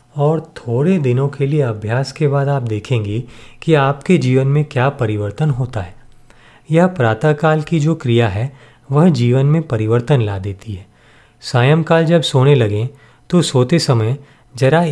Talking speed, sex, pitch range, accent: 155 wpm, male, 115-145 Hz, native